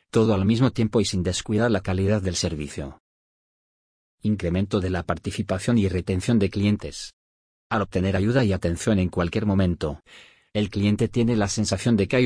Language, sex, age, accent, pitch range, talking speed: Spanish, male, 40-59, Spanish, 90-110 Hz, 170 wpm